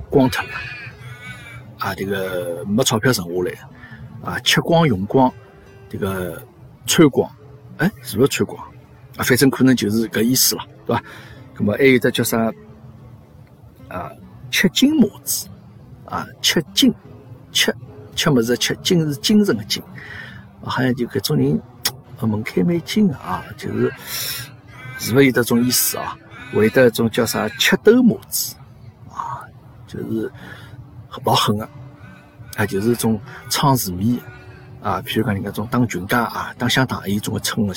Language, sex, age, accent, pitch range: Chinese, male, 50-69, native, 105-130 Hz